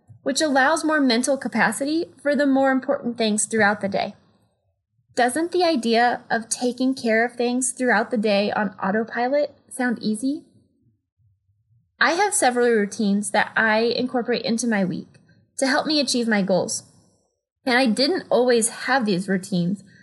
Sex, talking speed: female, 155 wpm